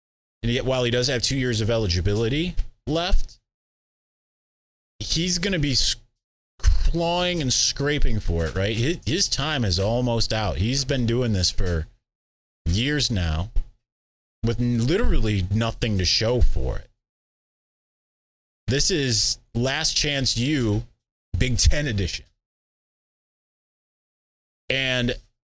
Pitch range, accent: 105-130 Hz, American